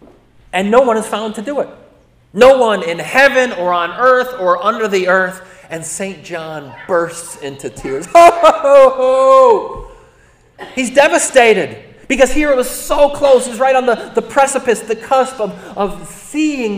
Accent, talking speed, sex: American, 155 wpm, male